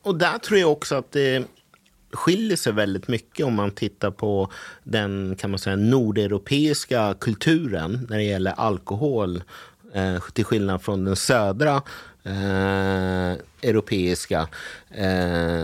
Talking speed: 105 wpm